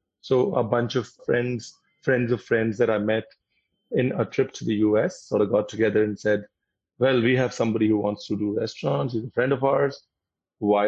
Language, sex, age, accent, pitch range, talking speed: English, male, 30-49, Indian, 105-125 Hz, 210 wpm